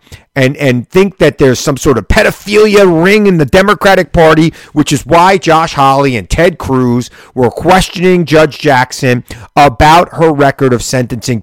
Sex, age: male, 40-59